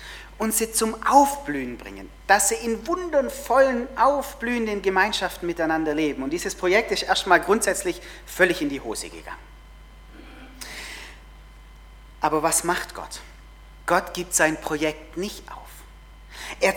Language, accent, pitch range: German, German, 175-240 Hz